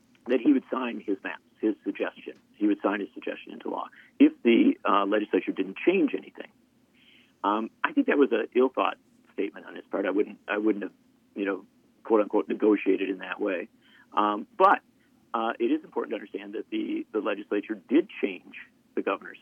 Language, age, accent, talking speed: English, 50-69, American, 195 wpm